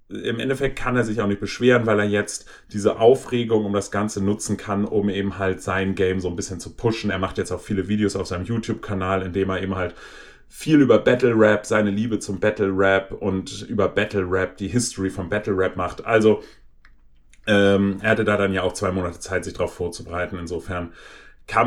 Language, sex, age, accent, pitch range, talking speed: German, male, 30-49, German, 95-115 Hz, 215 wpm